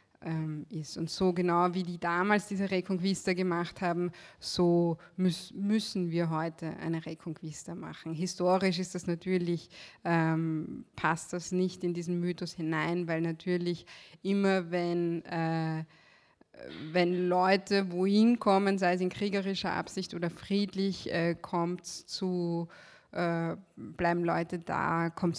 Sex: female